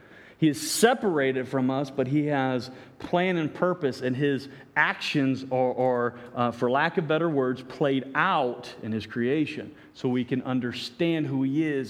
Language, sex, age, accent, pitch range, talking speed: English, male, 40-59, American, 130-170 Hz, 170 wpm